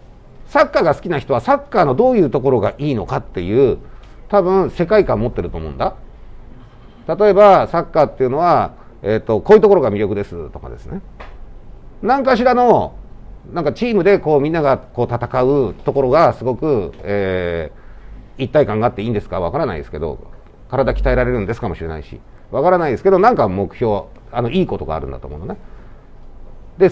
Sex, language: male, Japanese